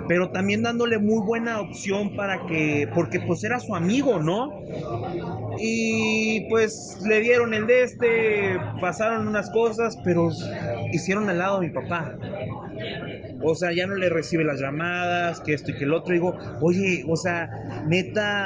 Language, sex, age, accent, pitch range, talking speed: Spanish, male, 30-49, Mexican, 150-200 Hz, 165 wpm